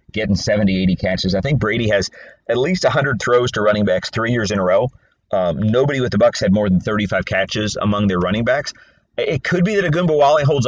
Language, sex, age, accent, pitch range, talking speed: English, male, 30-49, American, 95-120 Hz, 230 wpm